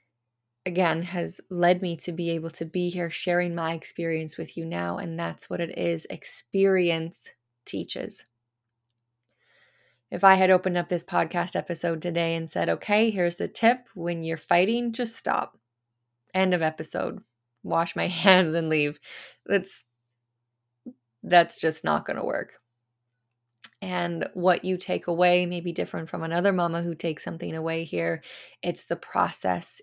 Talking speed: 155 wpm